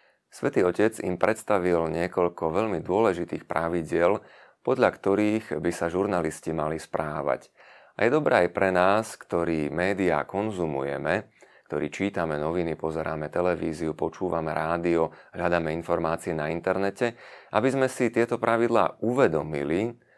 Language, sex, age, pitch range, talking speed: Slovak, male, 30-49, 80-105 Hz, 120 wpm